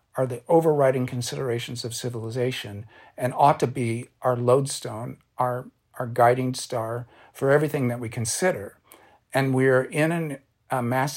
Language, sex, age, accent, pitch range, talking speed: English, male, 50-69, American, 125-150 Hz, 145 wpm